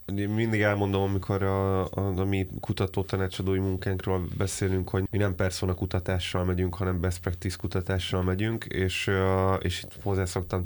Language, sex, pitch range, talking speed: Hungarian, male, 90-100 Hz, 160 wpm